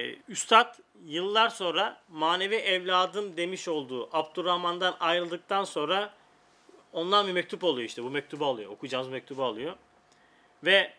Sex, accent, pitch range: male, native, 145-185 Hz